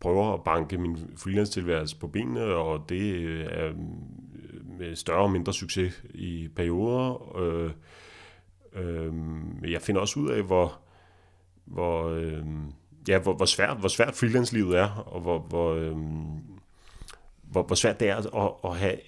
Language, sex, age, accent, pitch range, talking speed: Danish, male, 30-49, native, 80-95 Hz, 150 wpm